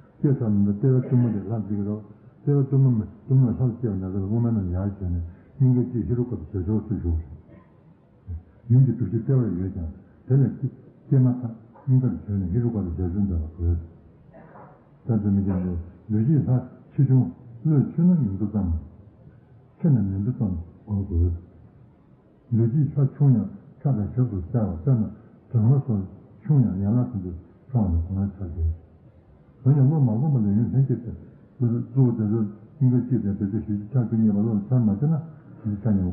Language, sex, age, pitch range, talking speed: Italian, male, 60-79, 100-130 Hz, 40 wpm